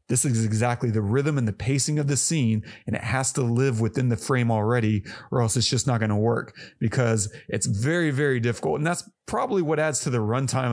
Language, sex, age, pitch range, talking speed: English, male, 30-49, 115-140 Hz, 230 wpm